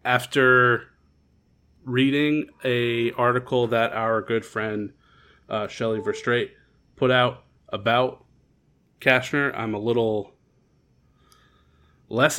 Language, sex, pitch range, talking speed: English, male, 105-125 Hz, 90 wpm